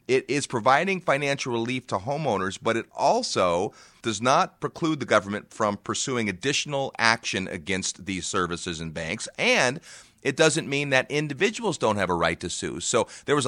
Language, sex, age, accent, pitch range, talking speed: English, male, 30-49, American, 95-125 Hz, 175 wpm